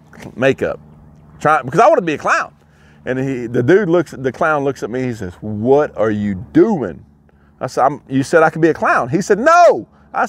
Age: 40-59